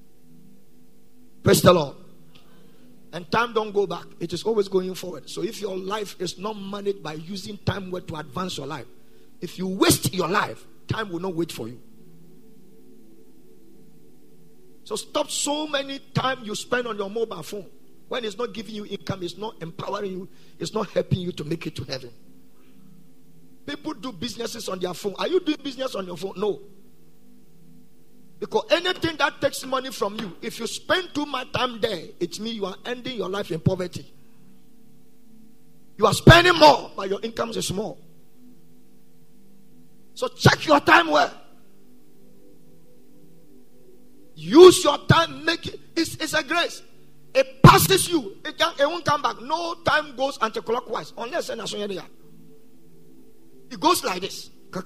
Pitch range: 180-265 Hz